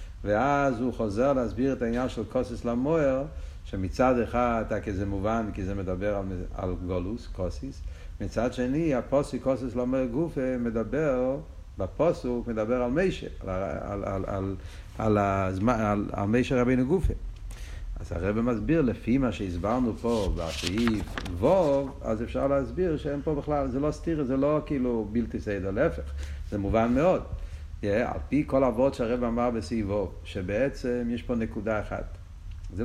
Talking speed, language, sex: 155 wpm, Hebrew, male